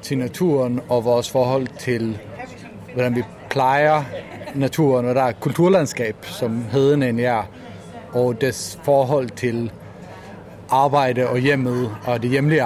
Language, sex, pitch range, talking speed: Danish, male, 120-145 Hz, 135 wpm